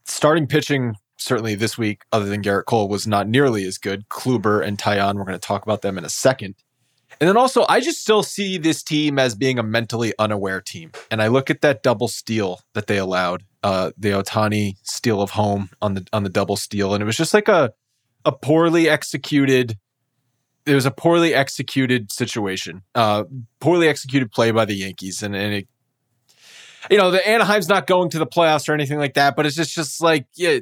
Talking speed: 210 wpm